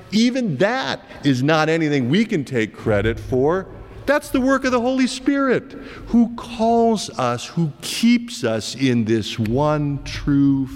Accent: American